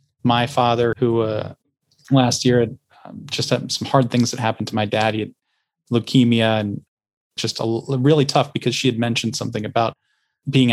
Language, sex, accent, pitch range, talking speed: English, male, American, 115-145 Hz, 190 wpm